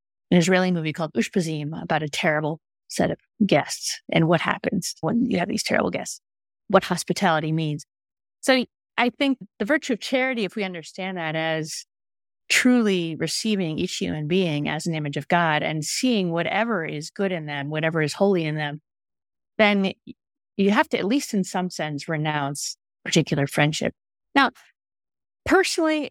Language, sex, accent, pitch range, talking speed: English, female, American, 165-215 Hz, 165 wpm